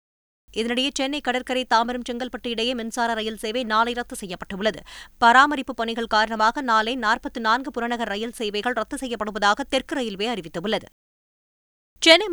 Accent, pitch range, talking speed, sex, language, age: native, 220-265 Hz, 125 wpm, female, Tamil, 20-39